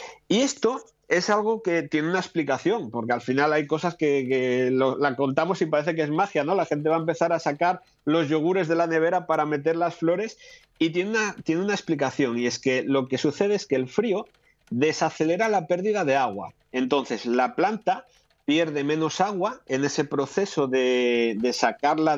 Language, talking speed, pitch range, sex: Spanish, 200 wpm, 140-190 Hz, male